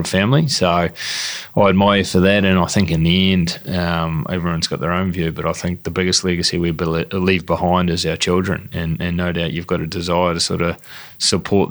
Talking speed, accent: 225 wpm, Australian